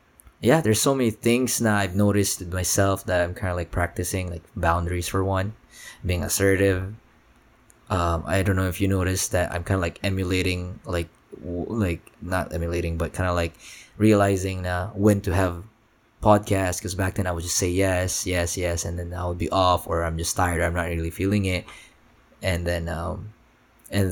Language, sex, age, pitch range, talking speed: Filipino, male, 20-39, 85-105 Hz, 195 wpm